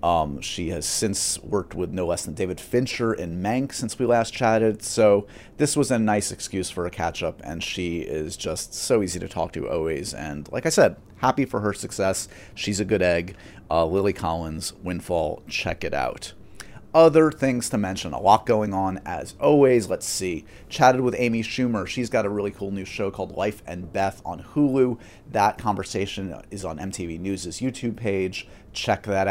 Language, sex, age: English, male, 30-49